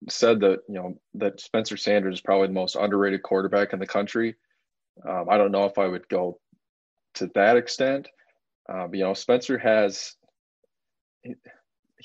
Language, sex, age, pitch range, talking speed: English, male, 20-39, 95-105 Hz, 165 wpm